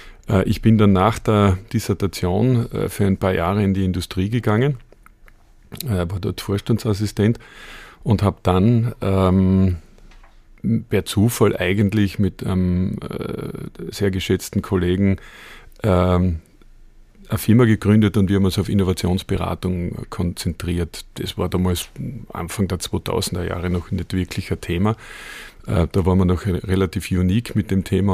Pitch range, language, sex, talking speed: 95-110 Hz, English, male, 135 wpm